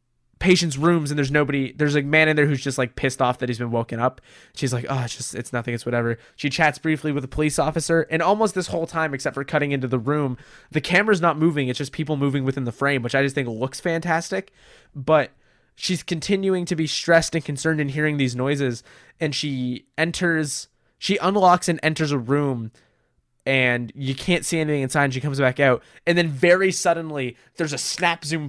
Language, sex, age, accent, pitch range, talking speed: English, male, 20-39, American, 135-165 Hz, 220 wpm